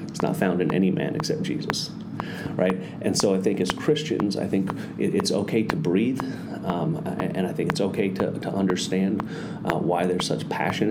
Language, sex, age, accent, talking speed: English, male, 30-49, American, 185 wpm